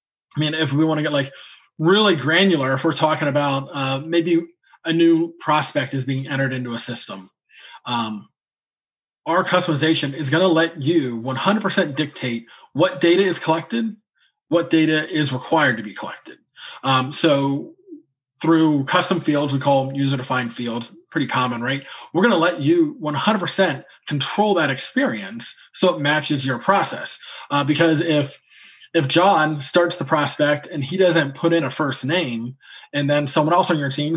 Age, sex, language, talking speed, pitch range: 20-39, male, English, 170 wpm, 135-170 Hz